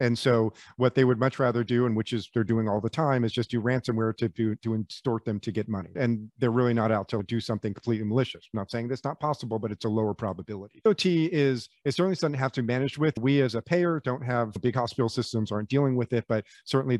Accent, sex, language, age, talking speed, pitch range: American, male, English, 40-59, 265 wpm, 110-130 Hz